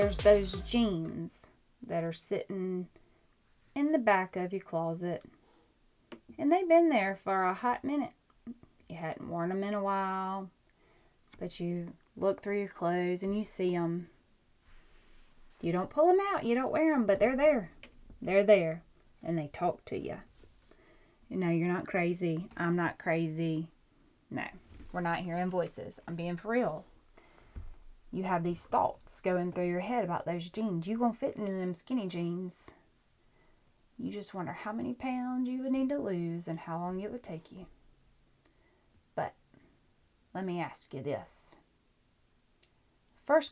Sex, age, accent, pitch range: female, 20-39, American, 170-245 Hz